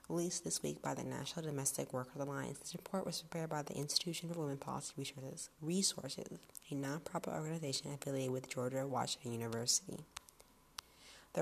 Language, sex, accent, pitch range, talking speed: English, female, American, 135-160 Hz, 160 wpm